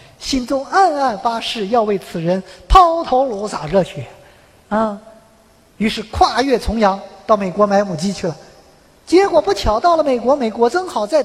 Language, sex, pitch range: Chinese, male, 200-310 Hz